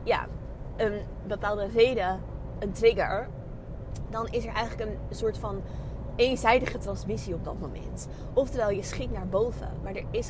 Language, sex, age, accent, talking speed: Dutch, female, 20-39, Dutch, 150 wpm